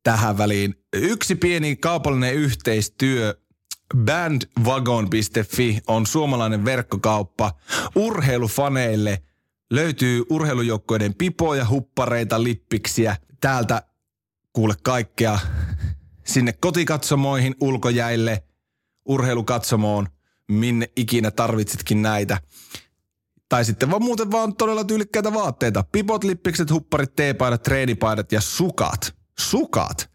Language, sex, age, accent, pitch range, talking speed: Finnish, male, 30-49, native, 105-135 Hz, 85 wpm